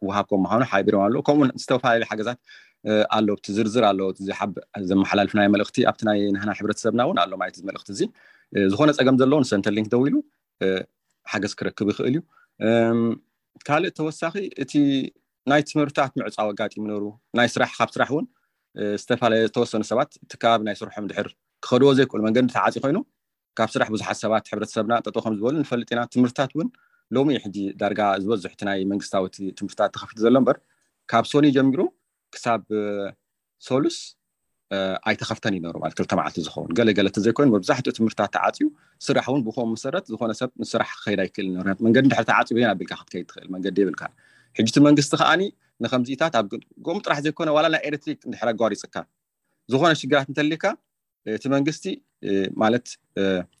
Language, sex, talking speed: Amharic, male, 90 wpm